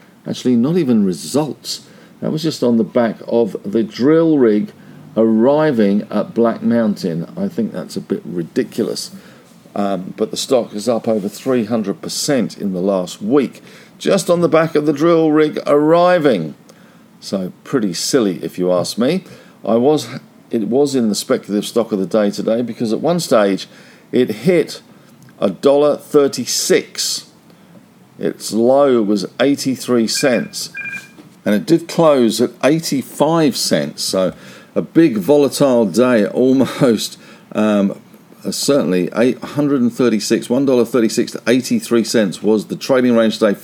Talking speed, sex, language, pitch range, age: 135 wpm, male, English, 105-155 Hz, 50-69